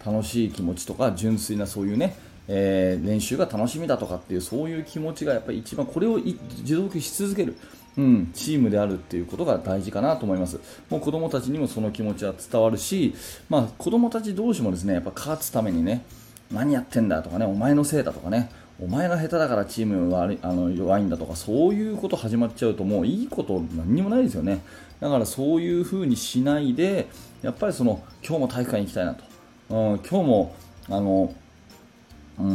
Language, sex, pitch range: Japanese, male, 100-150 Hz